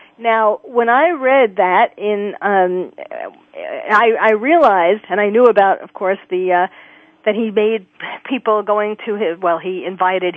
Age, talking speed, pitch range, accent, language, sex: 40-59, 160 wpm, 200-260 Hz, American, English, female